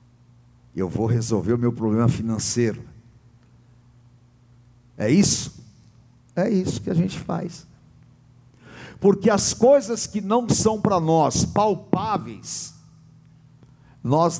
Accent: Brazilian